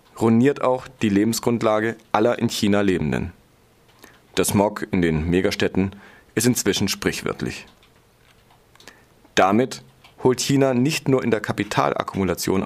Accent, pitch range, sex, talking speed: German, 100-125 Hz, male, 115 wpm